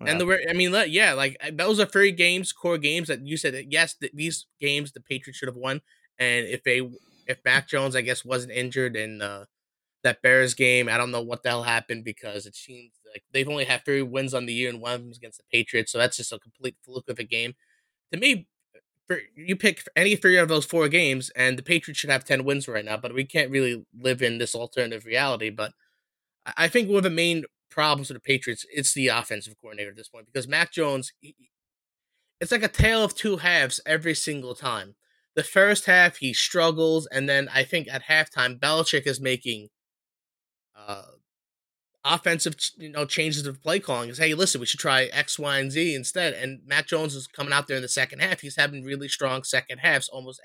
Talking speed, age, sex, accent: 225 wpm, 20-39, male, American